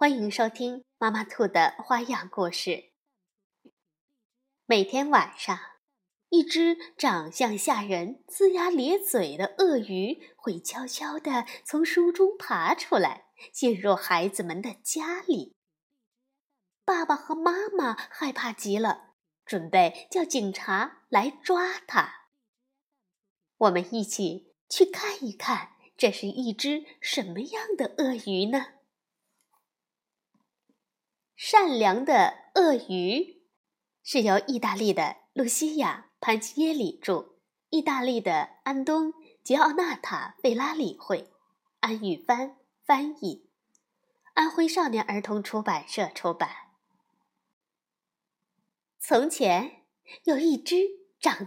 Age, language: 20-39, Chinese